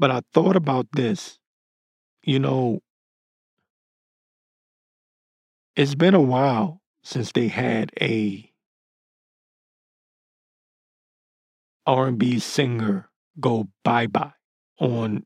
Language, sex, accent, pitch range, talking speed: English, male, American, 110-130 Hz, 80 wpm